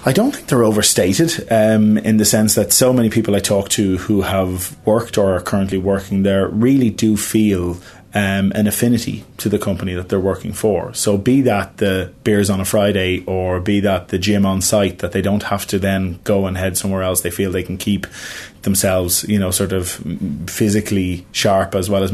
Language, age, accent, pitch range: English, 30-49, Irish, 95-105 Hz